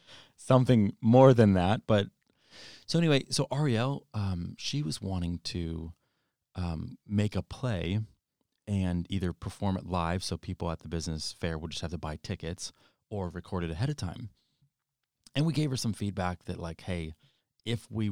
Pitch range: 85-115 Hz